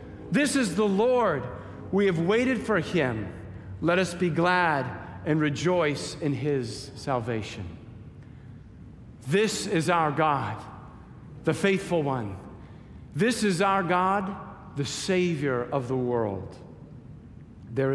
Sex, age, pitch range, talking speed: male, 50-69, 130-190 Hz, 115 wpm